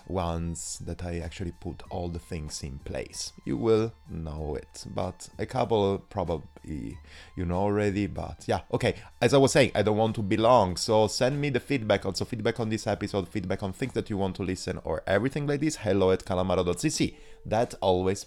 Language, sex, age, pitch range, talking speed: English, male, 30-49, 90-115 Hz, 200 wpm